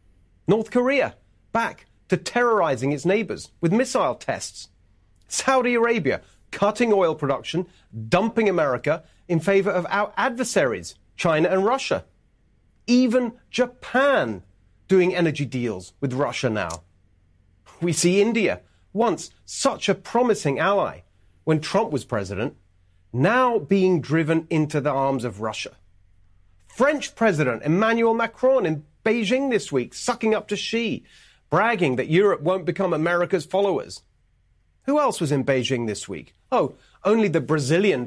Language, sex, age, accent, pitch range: Japanese, male, 40-59, British, 135-220 Hz